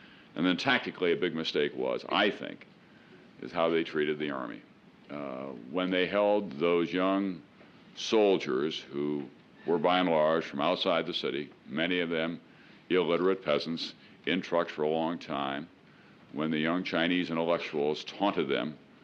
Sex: male